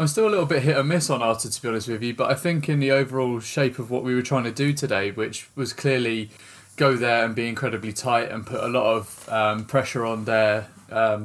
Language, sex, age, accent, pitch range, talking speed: English, male, 20-39, British, 110-130 Hz, 260 wpm